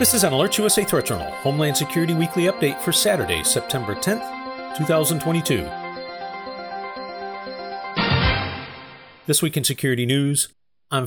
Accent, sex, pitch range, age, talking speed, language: American, male, 120-160 Hz, 40-59, 120 wpm, English